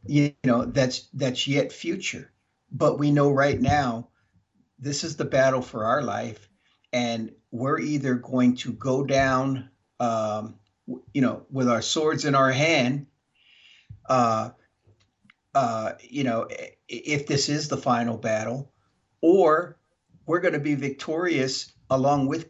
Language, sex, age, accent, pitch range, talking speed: English, male, 50-69, American, 120-140 Hz, 140 wpm